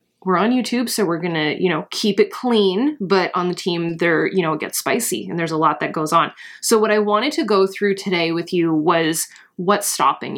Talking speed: 245 wpm